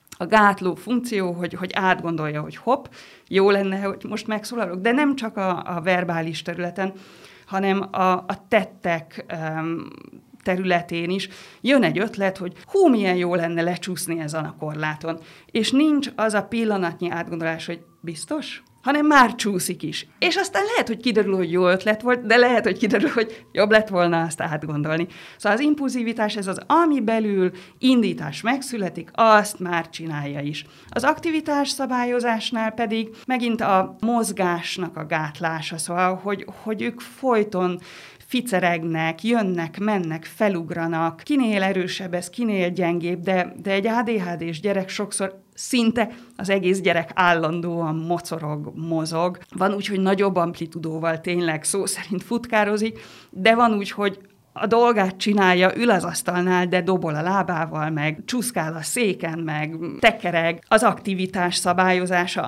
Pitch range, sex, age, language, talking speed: 170-220 Hz, female, 30-49, Hungarian, 145 wpm